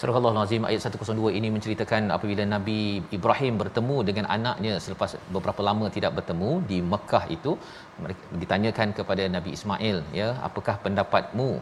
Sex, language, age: male, Malayalam, 40-59